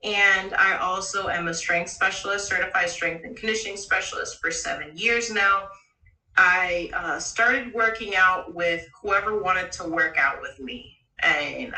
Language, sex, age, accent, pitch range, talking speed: English, female, 30-49, American, 170-210 Hz, 155 wpm